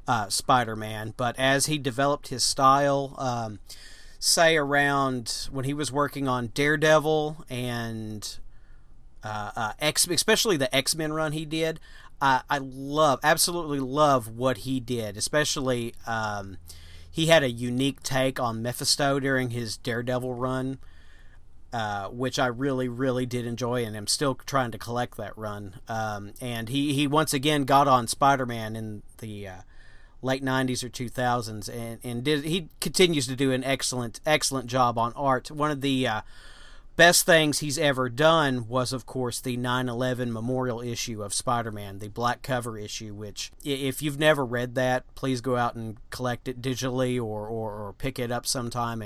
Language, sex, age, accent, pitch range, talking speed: English, male, 40-59, American, 115-140 Hz, 170 wpm